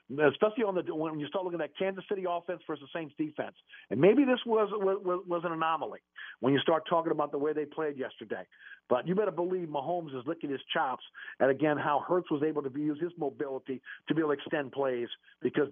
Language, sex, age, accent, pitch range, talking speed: English, male, 50-69, American, 150-200 Hz, 230 wpm